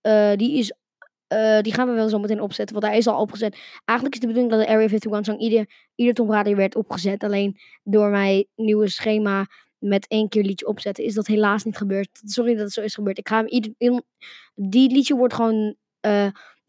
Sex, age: female, 20-39